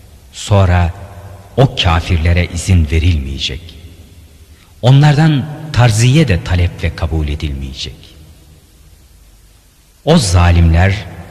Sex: male